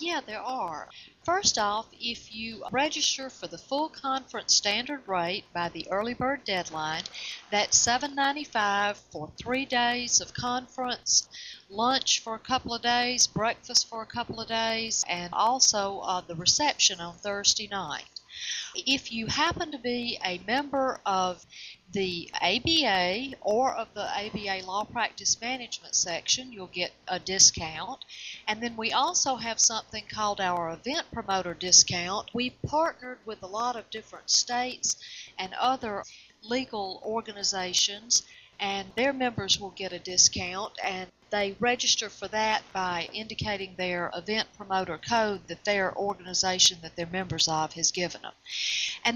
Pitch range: 190-250 Hz